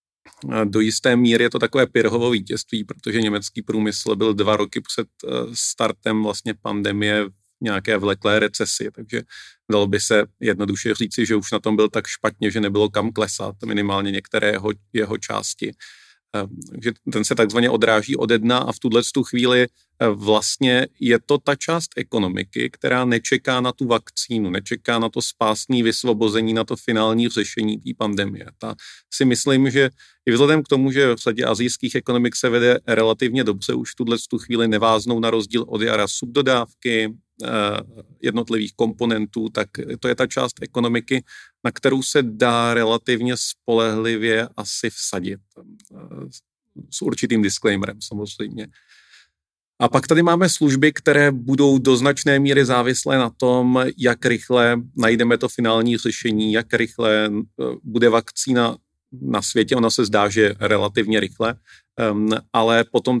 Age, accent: 40-59, native